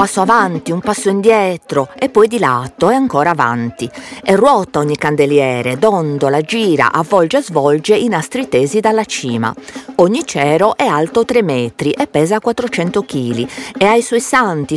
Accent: native